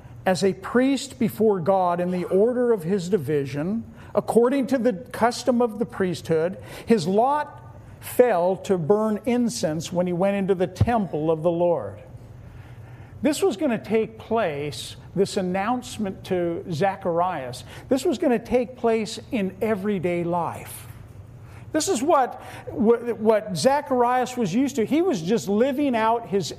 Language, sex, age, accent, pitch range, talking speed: English, male, 50-69, American, 175-265 Hz, 150 wpm